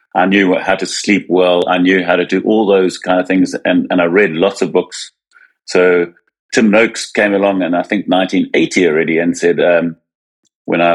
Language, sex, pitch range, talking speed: English, male, 85-95 Hz, 205 wpm